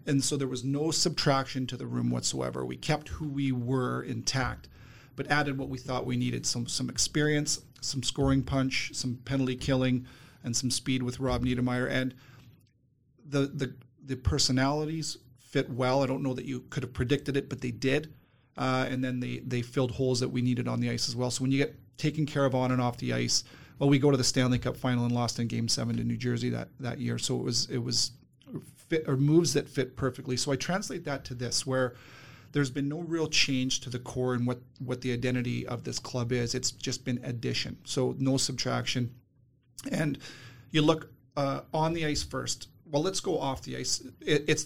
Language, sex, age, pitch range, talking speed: English, male, 40-59, 125-140 Hz, 215 wpm